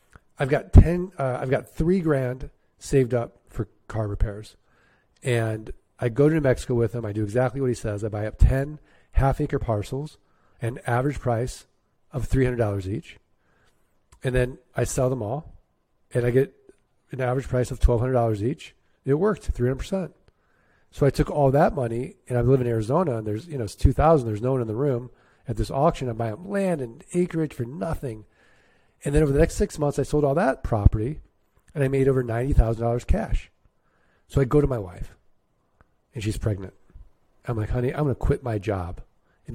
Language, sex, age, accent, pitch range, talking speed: English, male, 40-59, American, 110-140 Hz, 195 wpm